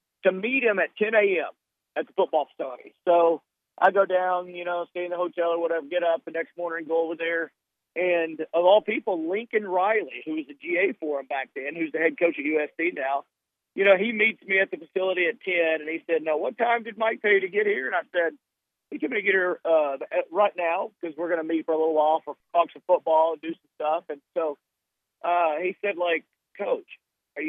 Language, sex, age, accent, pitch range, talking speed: English, male, 50-69, American, 160-195 Hz, 240 wpm